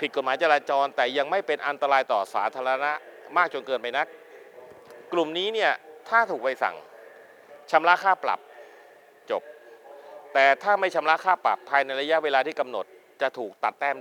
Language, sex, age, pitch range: Thai, male, 30-49, 140-185 Hz